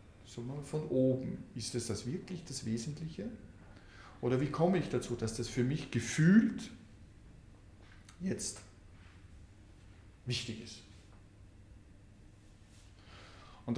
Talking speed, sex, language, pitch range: 100 wpm, male, German, 100-135 Hz